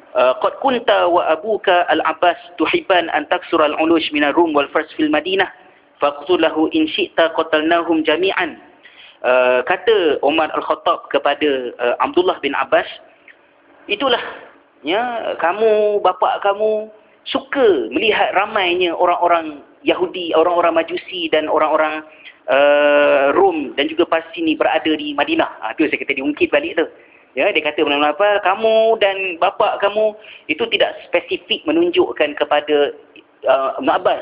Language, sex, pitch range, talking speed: Malay, male, 155-225 Hz, 130 wpm